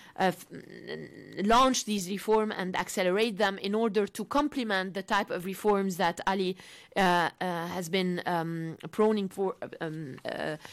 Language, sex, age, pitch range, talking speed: English, female, 30-49, 180-230 Hz, 150 wpm